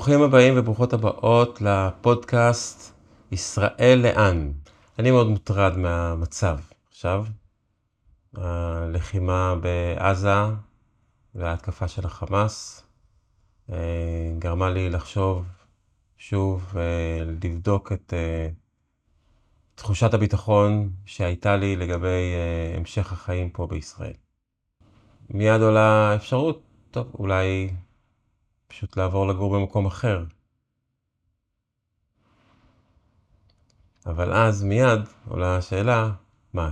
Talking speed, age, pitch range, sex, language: 80 wpm, 30-49, 90-110 Hz, male, Hebrew